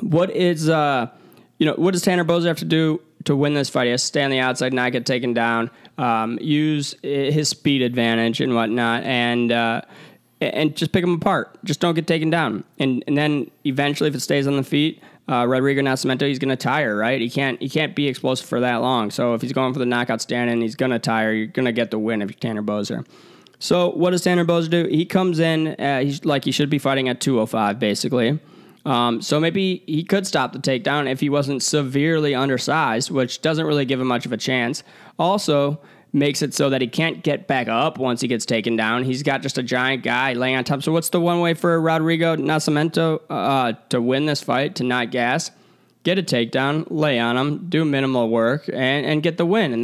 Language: English